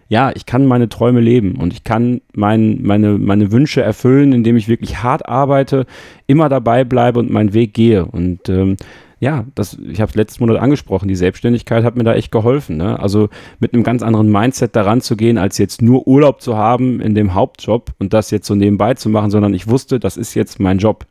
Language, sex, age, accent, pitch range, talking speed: German, male, 40-59, German, 100-120 Hz, 210 wpm